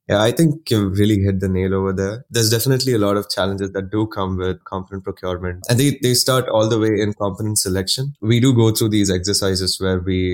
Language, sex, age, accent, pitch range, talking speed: English, male, 20-39, Indian, 95-110 Hz, 230 wpm